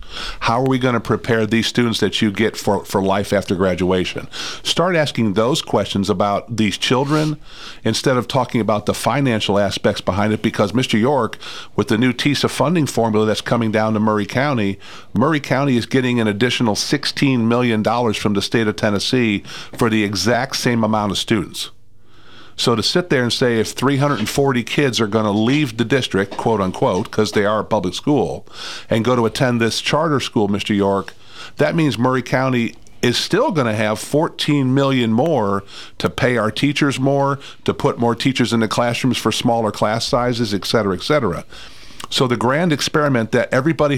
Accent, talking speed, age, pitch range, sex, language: American, 185 wpm, 50-69, 105-130 Hz, male, English